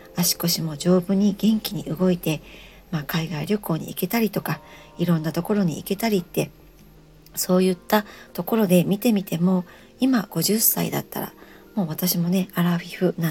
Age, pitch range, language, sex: 40-59, 170-215 Hz, Japanese, male